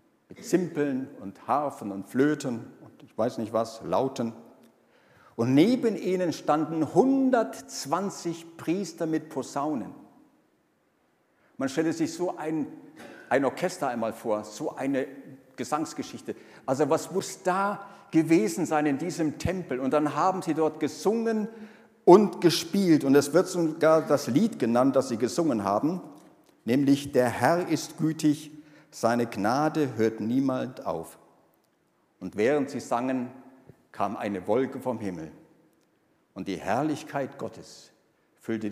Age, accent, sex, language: 50-69, German, male, German